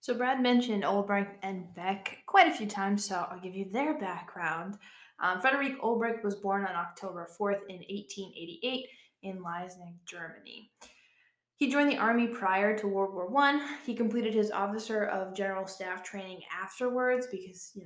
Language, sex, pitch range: English, female, 185-230 Hz